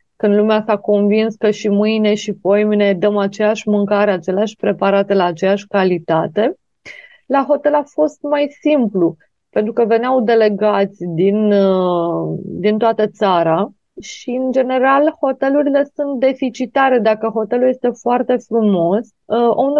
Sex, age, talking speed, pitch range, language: female, 30-49, 130 wpm, 200-265 Hz, Romanian